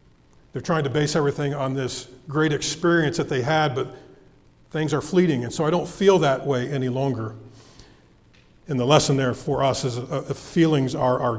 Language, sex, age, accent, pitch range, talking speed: English, male, 40-59, American, 125-160 Hz, 190 wpm